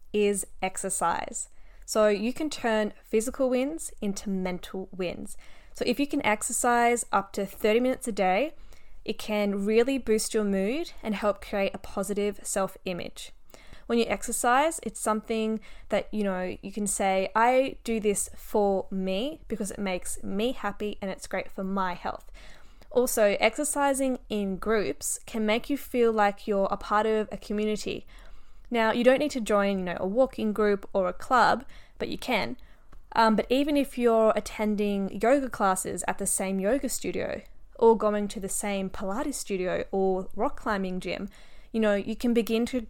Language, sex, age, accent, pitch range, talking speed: English, female, 10-29, Australian, 195-235 Hz, 170 wpm